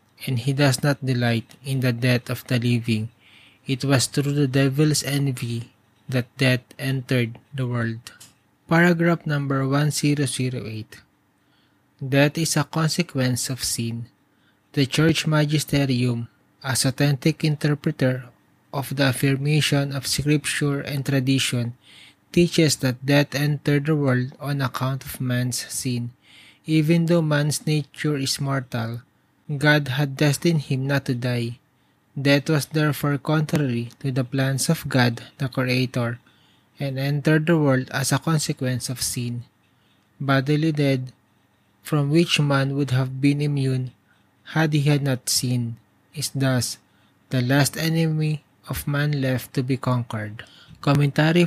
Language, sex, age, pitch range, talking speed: English, male, 20-39, 125-145 Hz, 135 wpm